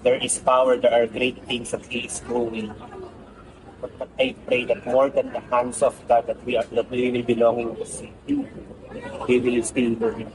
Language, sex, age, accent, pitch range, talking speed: Filipino, male, 30-49, native, 120-145 Hz, 195 wpm